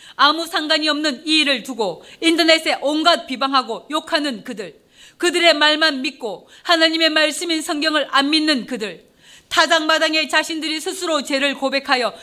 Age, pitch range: 40-59, 265-315 Hz